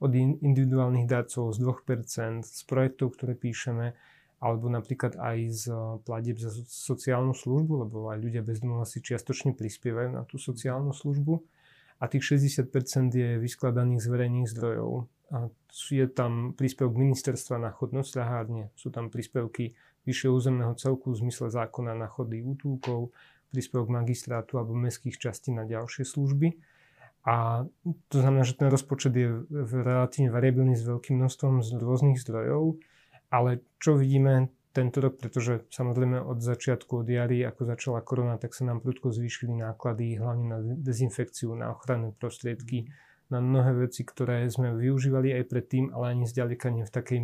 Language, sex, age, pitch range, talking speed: Slovak, male, 30-49, 120-130 Hz, 145 wpm